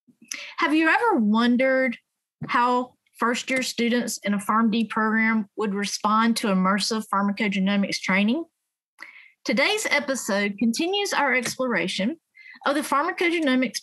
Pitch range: 210-295 Hz